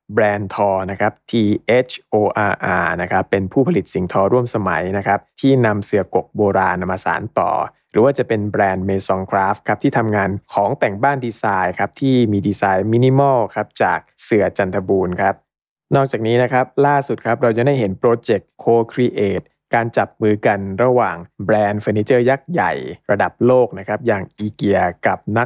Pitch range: 100-125 Hz